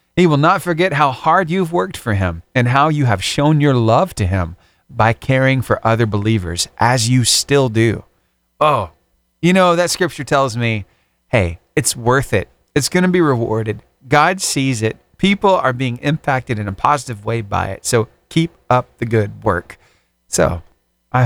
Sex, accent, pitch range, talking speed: male, American, 105-170 Hz, 185 wpm